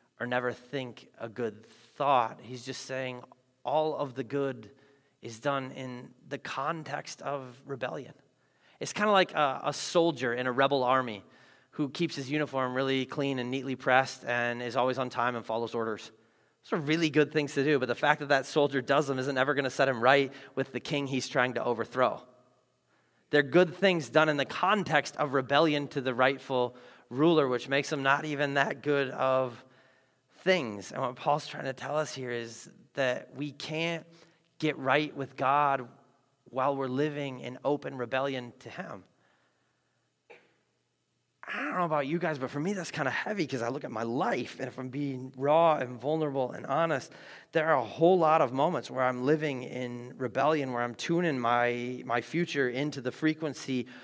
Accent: American